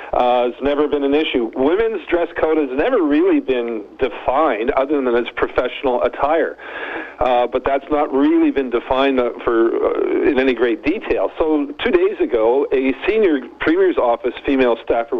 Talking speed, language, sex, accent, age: 165 wpm, English, male, American, 50-69